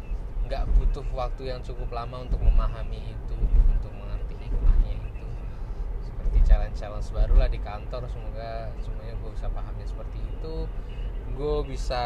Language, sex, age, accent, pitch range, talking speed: Indonesian, male, 20-39, native, 105-125 Hz, 135 wpm